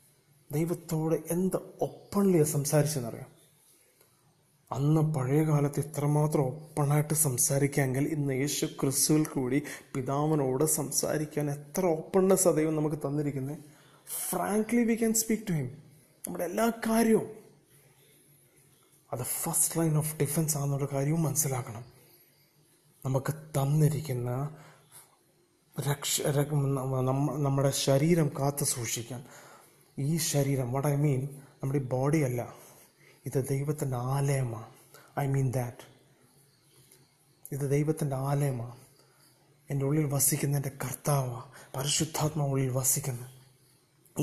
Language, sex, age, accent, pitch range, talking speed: Malayalam, male, 30-49, native, 135-150 Hz, 95 wpm